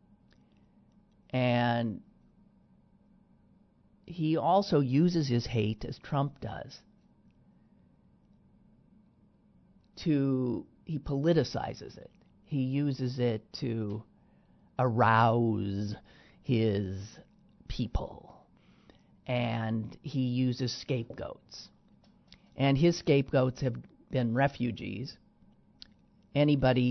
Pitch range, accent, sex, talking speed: 115-140 Hz, American, male, 70 wpm